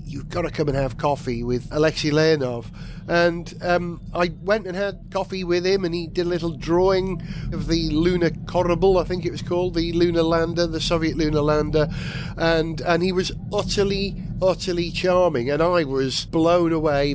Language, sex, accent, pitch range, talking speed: English, male, British, 150-180 Hz, 185 wpm